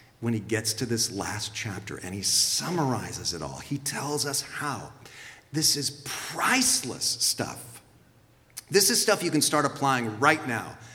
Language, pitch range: English, 115-160 Hz